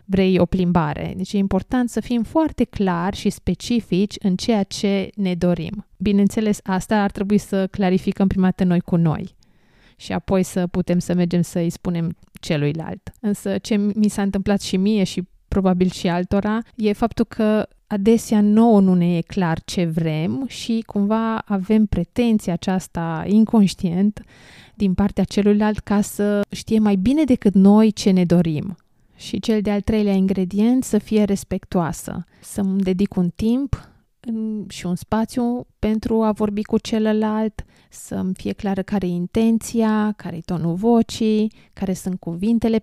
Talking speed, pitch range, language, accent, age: 155 wpm, 180-210 Hz, Romanian, native, 20-39